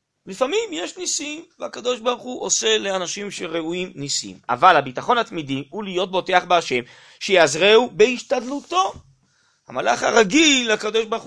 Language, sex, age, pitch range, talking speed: Hebrew, male, 30-49, 165-255 Hz, 120 wpm